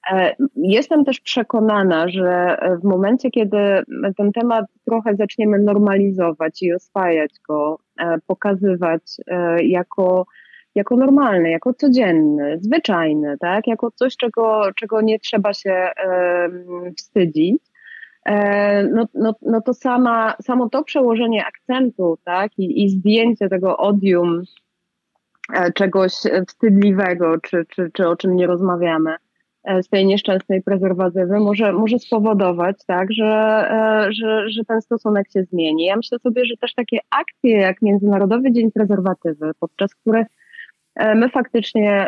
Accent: native